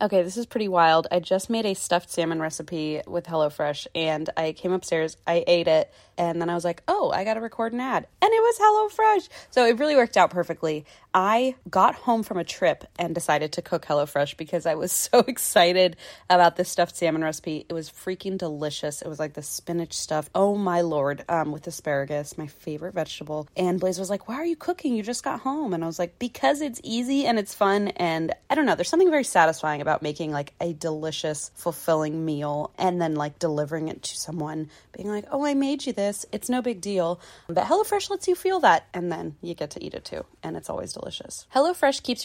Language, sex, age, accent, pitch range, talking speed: English, female, 20-39, American, 160-230 Hz, 225 wpm